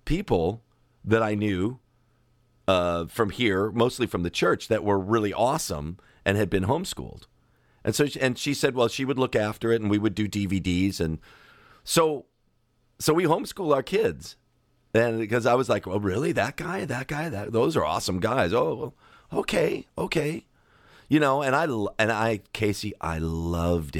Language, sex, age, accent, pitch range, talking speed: English, male, 40-59, American, 95-115 Hz, 175 wpm